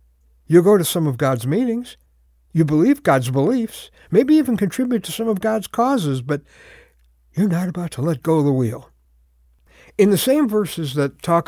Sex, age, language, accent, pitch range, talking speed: male, 60-79, English, American, 120-180 Hz, 185 wpm